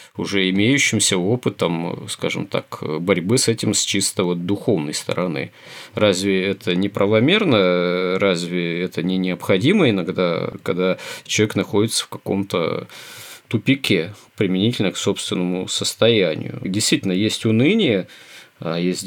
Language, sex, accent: Russian, male, native